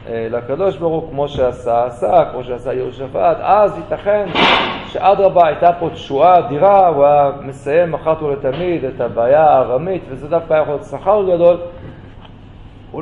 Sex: male